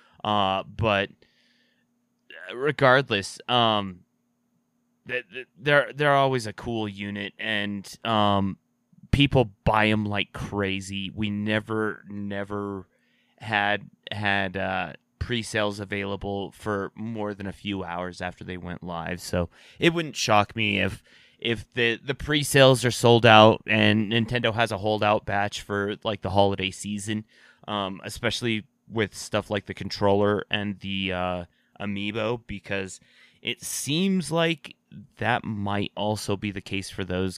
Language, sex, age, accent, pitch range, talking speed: English, male, 30-49, American, 100-115 Hz, 130 wpm